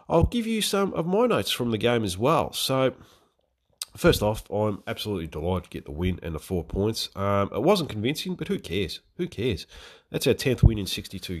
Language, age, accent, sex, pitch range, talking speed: English, 30-49, Australian, male, 90-115 Hz, 215 wpm